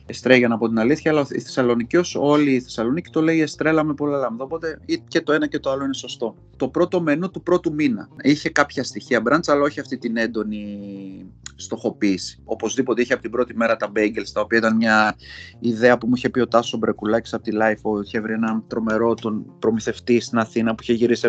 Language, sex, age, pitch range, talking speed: Greek, male, 30-49, 120-165 Hz, 210 wpm